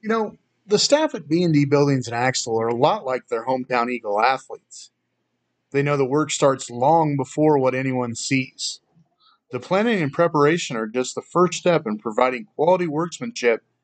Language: English